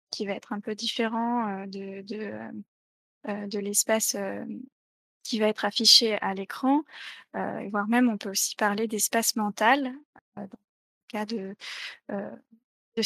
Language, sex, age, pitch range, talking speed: French, female, 20-39, 205-240 Hz, 135 wpm